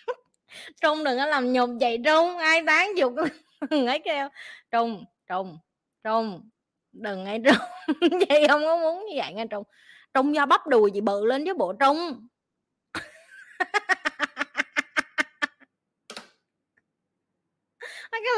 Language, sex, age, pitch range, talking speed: Vietnamese, female, 20-39, 240-330 Hz, 125 wpm